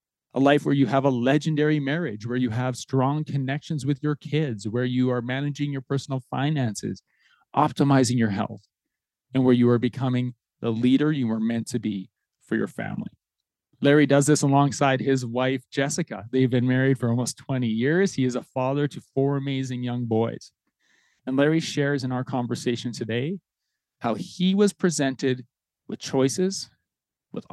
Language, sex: English, male